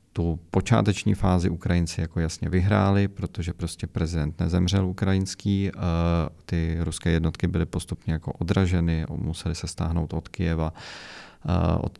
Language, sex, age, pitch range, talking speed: Czech, male, 40-59, 85-95 Hz, 125 wpm